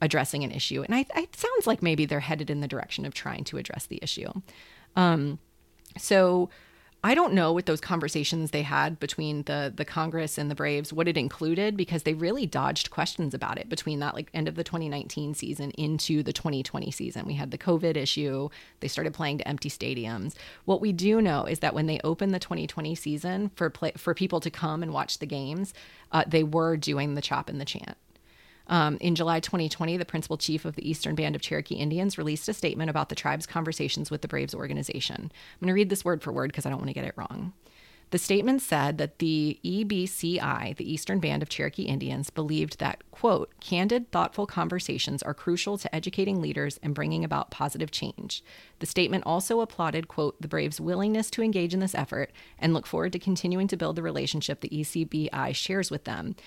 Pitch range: 145-180 Hz